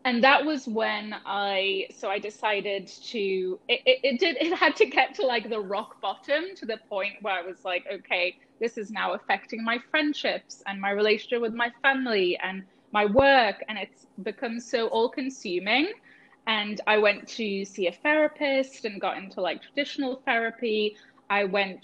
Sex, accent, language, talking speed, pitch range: female, British, English, 180 wpm, 195-265 Hz